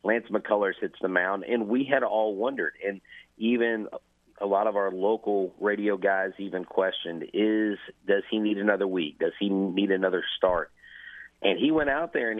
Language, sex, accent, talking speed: English, male, American, 185 wpm